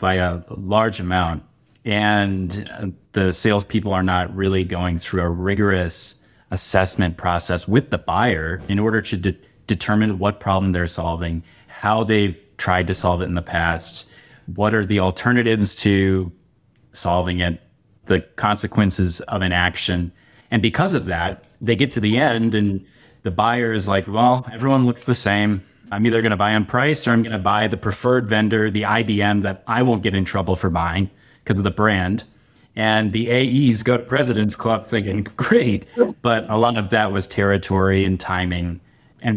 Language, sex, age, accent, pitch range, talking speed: English, male, 30-49, American, 95-115 Hz, 170 wpm